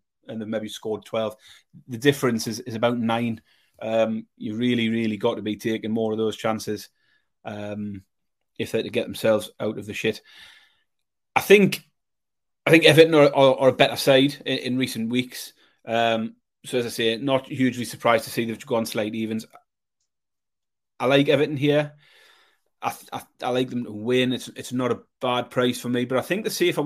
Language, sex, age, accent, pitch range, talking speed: English, male, 30-49, British, 115-140 Hz, 190 wpm